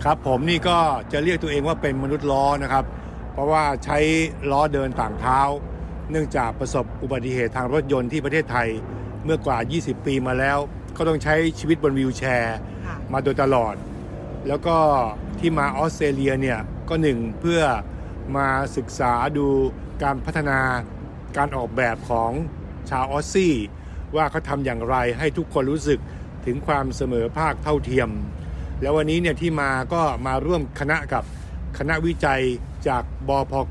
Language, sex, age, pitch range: Thai, male, 60-79, 120-150 Hz